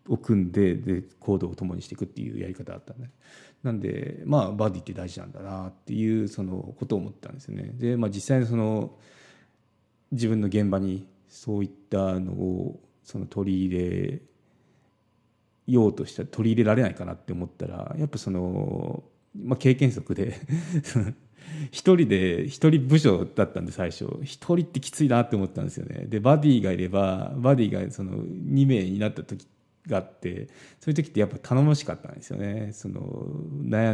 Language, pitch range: Japanese, 95-135 Hz